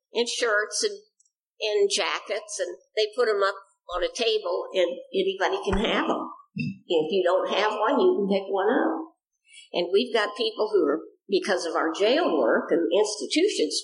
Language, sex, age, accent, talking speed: English, female, 50-69, American, 180 wpm